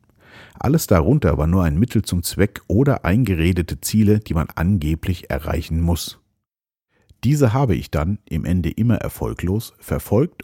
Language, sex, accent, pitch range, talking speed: German, male, German, 80-110 Hz, 145 wpm